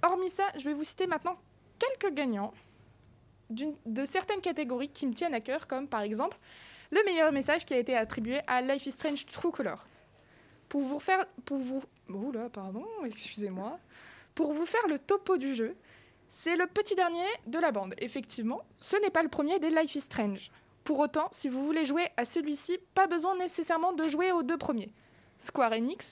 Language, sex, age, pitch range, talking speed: French, female, 20-39, 230-335 Hz, 195 wpm